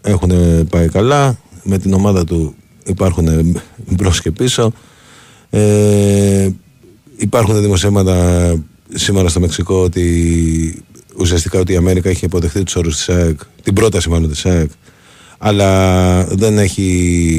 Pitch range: 85-100 Hz